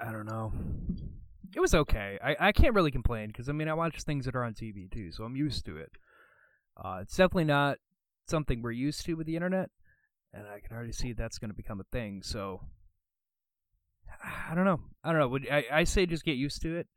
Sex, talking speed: male, 230 wpm